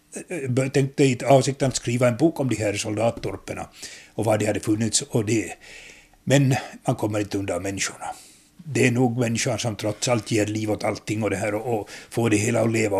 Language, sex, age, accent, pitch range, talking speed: Swedish, male, 60-79, Finnish, 110-135 Hz, 200 wpm